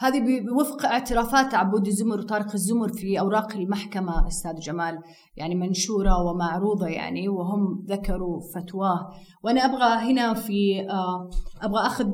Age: 30-49